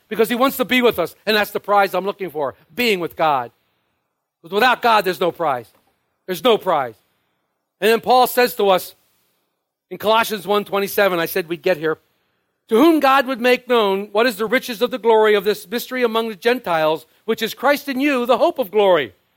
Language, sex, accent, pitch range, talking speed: English, male, American, 205-260 Hz, 210 wpm